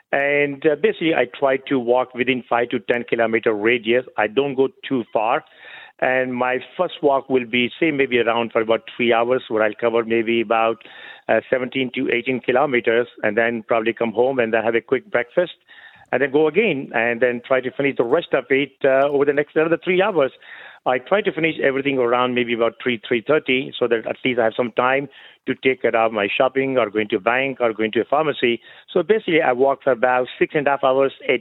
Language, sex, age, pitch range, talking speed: English, male, 50-69, 120-150 Hz, 225 wpm